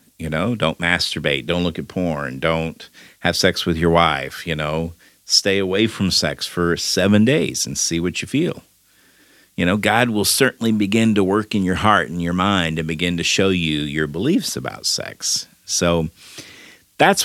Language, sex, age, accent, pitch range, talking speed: English, male, 50-69, American, 75-95 Hz, 185 wpm